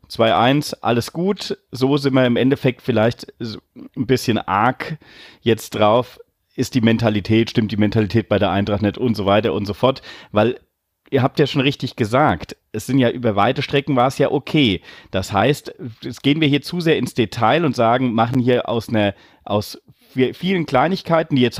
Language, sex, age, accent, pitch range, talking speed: German, male, 40-59, German, 115-140 Hz, 190 wpm